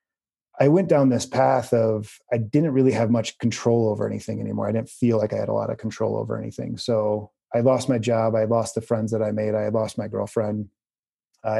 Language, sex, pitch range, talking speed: English, male, 110-125 Hz, 230 wpm